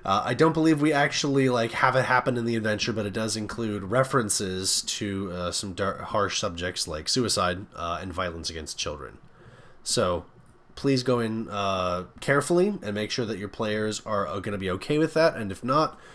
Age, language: 30-49, English